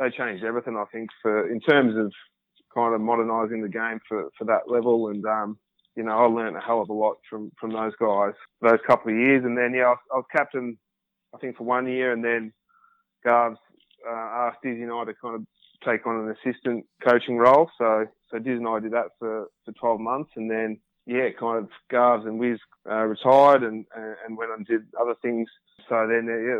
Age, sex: 20-39, male